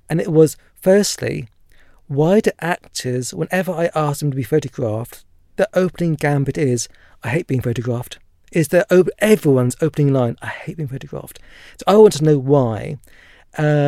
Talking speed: 170 wpm